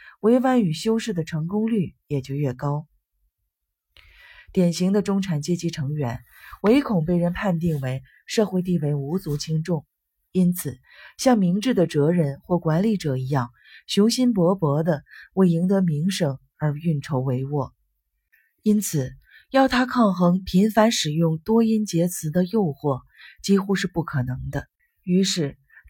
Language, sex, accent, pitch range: Chinese, female, native, 145-200 Hz